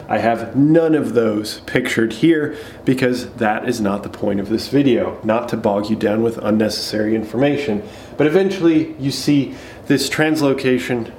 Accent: American